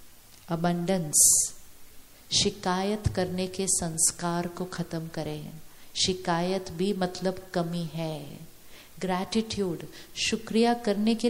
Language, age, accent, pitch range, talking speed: Hindi, 50-69, native, 170-220 Hz, 90 wpm